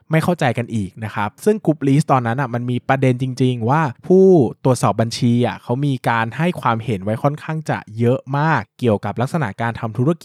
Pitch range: 110-140 Hz